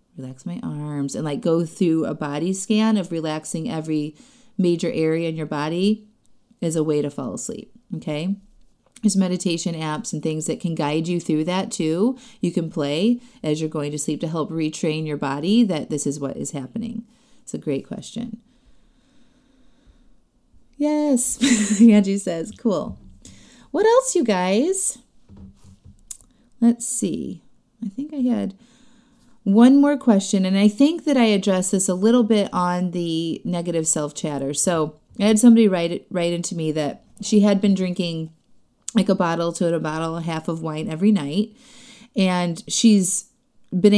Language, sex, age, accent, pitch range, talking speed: English, female, 30-49, American, 165-230 Hz, 165 wpm